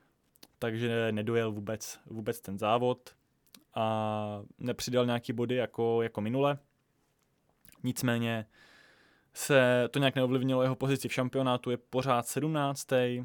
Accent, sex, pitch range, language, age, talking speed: native, male, 115-135 Hz, Czech, 20-39, 115 wpm